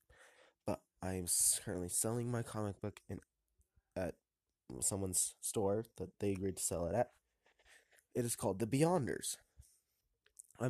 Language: English